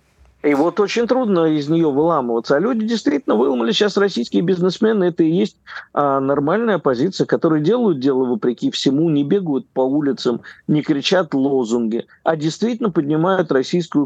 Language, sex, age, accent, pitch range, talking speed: Russian, male, 50-69, native, 125-175 Hz, 155 wpm